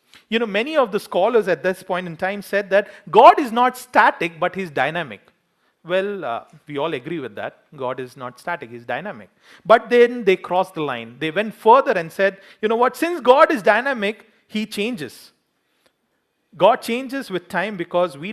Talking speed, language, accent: 195 wpm, English, Indian